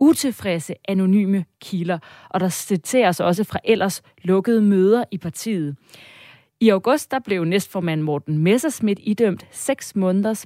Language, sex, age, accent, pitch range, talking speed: Danish, female, 30-49, native, 180-230 Hz, 130 wpm